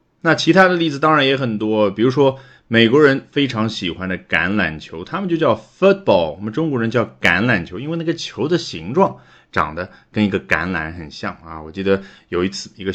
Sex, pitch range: male, 95-140 Hz